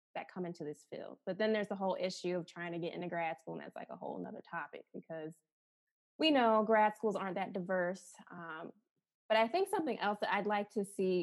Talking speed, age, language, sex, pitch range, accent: 235 wpm, 20-39, English, female, 180-215 Hz, American